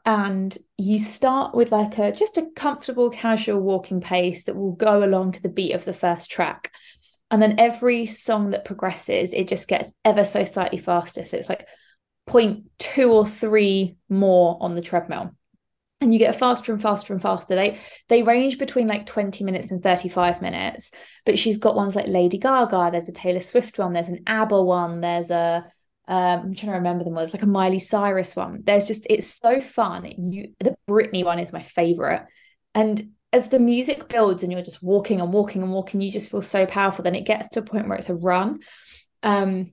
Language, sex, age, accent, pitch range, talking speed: English, female, 20-39, British, 180-220 Hz, 205 wpm